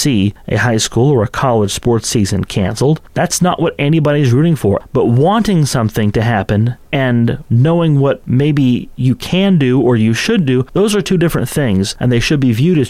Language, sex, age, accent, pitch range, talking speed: English, male, 30-49, American, 110-140 Hz, 200 wpm